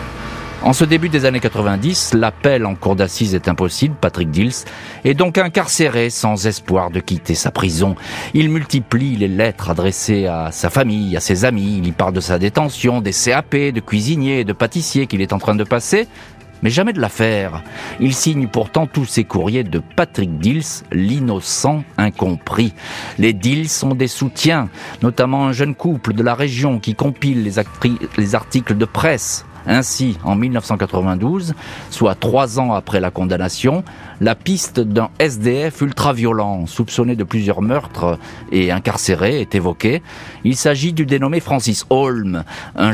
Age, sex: 40-59, male